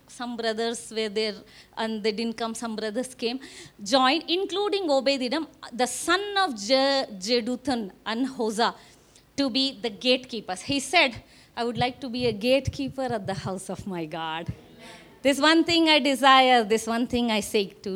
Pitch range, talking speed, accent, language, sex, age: 230-340 Hz, 170 wpm, Indian, English, female, 20-39